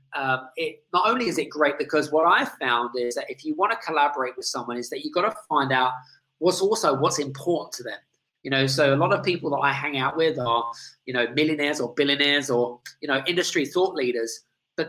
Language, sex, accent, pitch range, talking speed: English, male, British, 130-165 Hz, 235 wpm